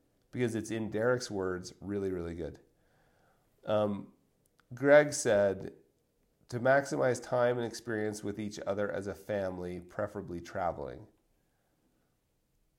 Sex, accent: male, American